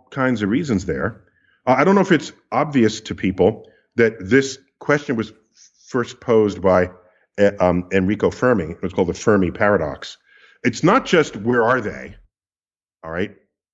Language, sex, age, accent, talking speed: English, male, 50-69, American, 160 wpm